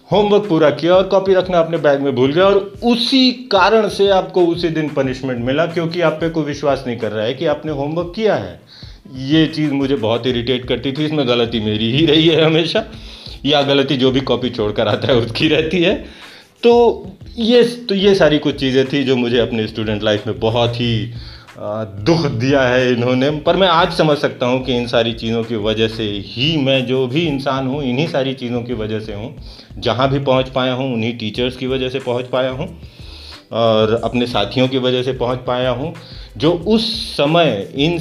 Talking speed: 205 wpm